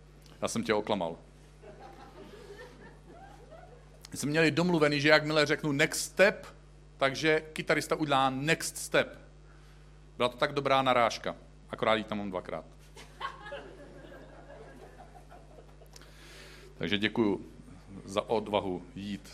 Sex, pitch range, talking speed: male, 115-175 Hz, 95 wpm